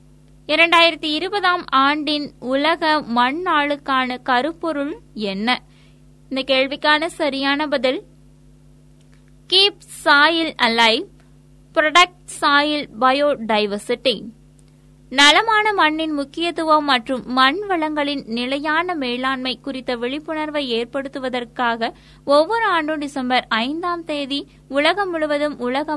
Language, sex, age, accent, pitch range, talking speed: Tamil, female, 20-39, native, 255-315 Hz, 55 wpm